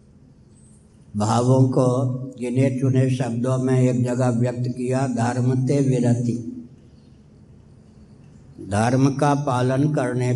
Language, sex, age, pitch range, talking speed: Hindi, male, 60-79, 125-145 Hz, 95 wpm